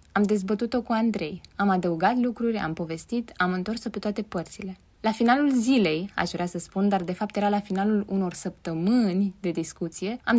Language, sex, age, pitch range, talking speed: Romanian, female, 20-39, 185-230 Hz, 185 wpm